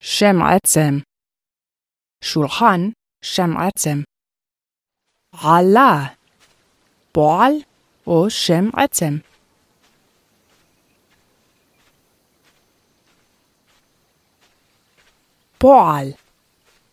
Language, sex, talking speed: Hebrew, female, 40 wpm